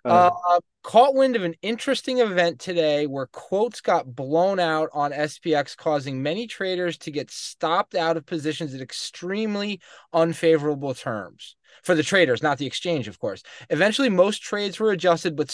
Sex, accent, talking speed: male, American, 160 wpm